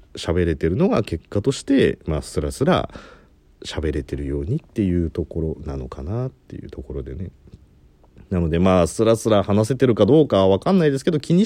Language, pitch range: Japanese, 75-125 Hz